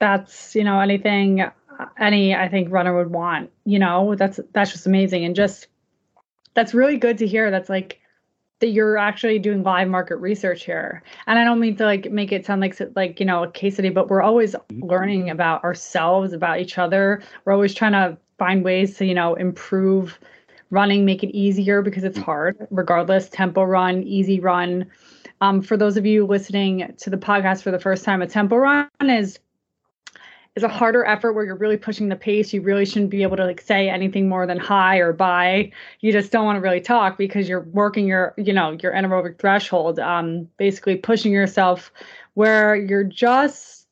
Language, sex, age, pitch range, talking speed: English, female, 20-39, 185-215 Hz, 195 wpm